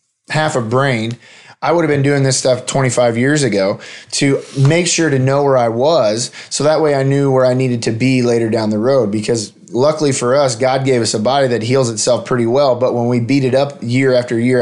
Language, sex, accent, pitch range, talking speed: English, male, American, 115-135 Hz, 240 wpm